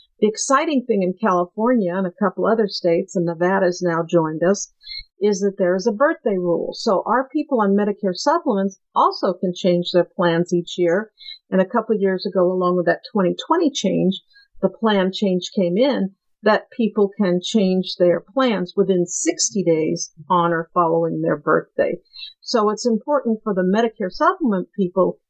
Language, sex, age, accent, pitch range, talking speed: English, female, 50-69, American, 180-225 Hz, 175 wpm